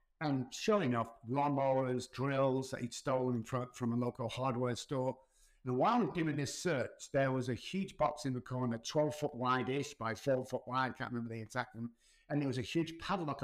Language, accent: English, British